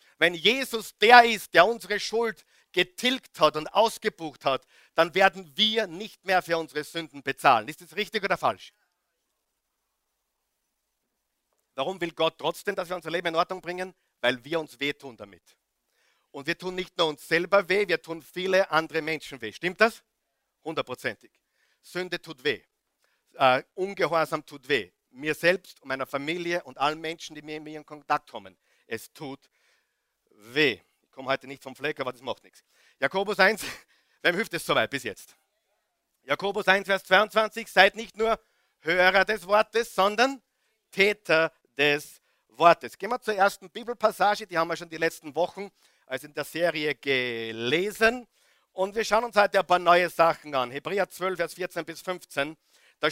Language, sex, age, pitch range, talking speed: German, male, 50-69, 155-200 Hz, 170 wpm